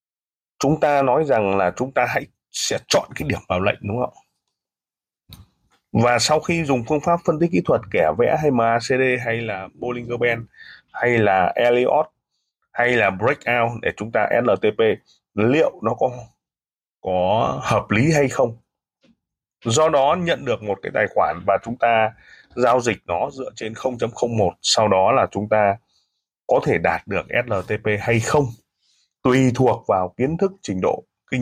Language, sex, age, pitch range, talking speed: Vietnamese, male, 20-39, 105-135 Hz, 170 wpm